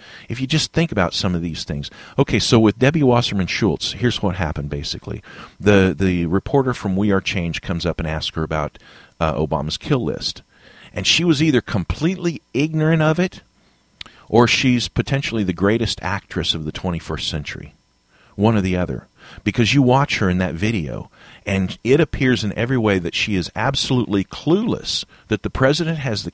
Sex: male